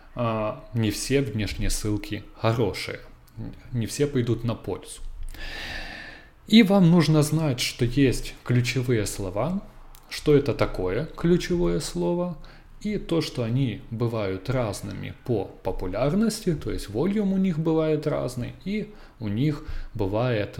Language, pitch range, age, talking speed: Russian, 105-150 Hz, 20-39, 120 wpm